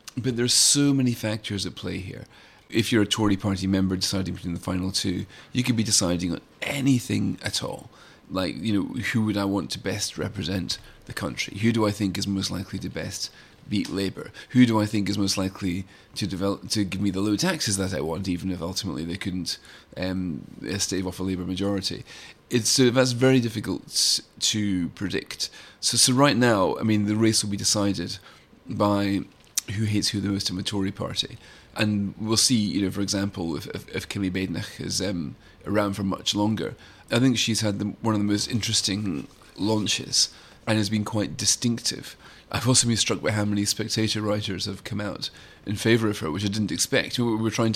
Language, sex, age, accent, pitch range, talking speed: English, male, 30-49, British, 95-110 Hz, 205 wpm